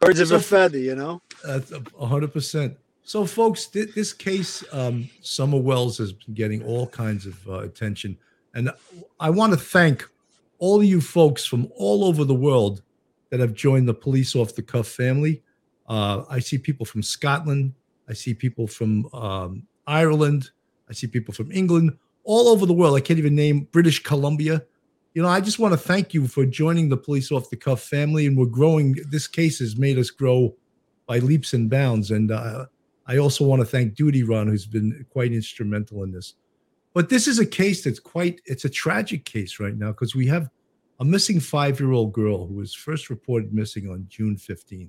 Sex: male